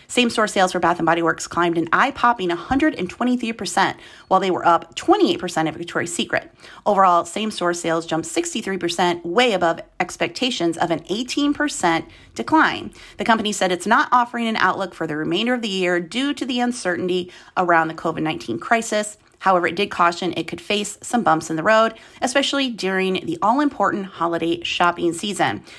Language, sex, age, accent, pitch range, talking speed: English, female, 30-49, American, 170-235 Hz, 170 wpm